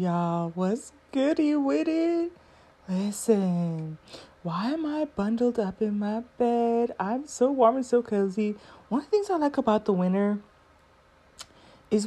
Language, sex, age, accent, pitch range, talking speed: English, female, 30-49, American, 185-245 Hz, 150 wpm